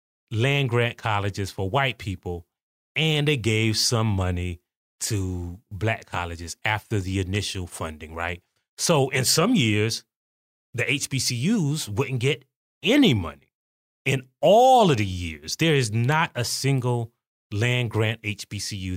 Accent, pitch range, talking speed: American, 100-130 Hz, 125 wpm